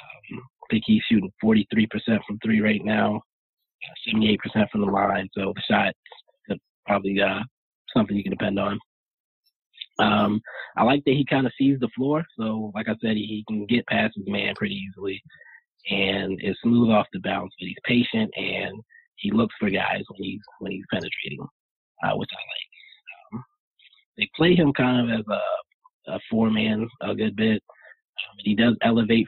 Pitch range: 105-125 Hz